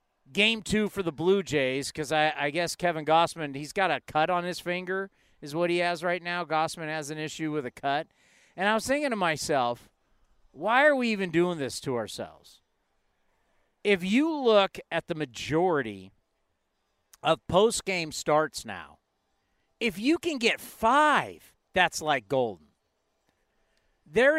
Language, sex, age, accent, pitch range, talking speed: English, male, 50-69, American, 155-200 Hz, 160 wpm